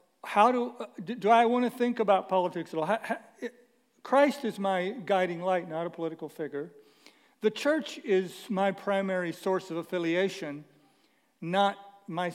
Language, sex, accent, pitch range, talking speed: English, male, American, 180-235 Hz, 145 wpm